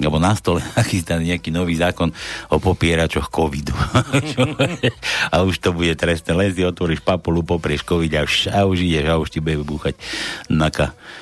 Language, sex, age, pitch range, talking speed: Slovak, male, 60-79, 90-125 Hz, 165 wpm